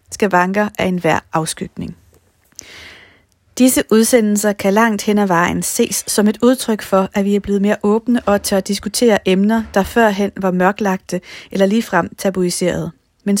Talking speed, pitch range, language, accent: 160 wpm, 180-220 Hz, Danish, native